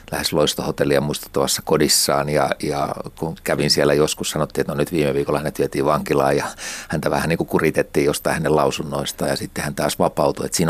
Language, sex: Finnish, male